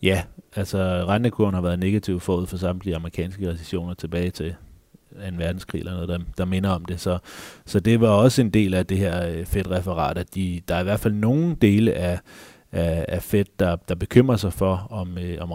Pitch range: 90-105 Hz